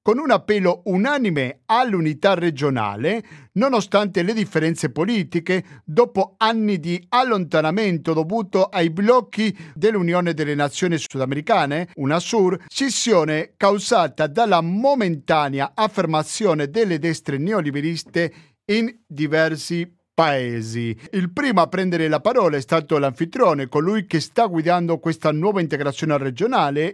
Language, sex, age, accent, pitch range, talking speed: Italian, male, 50-69, native, 150-205 Hz, 115 wpm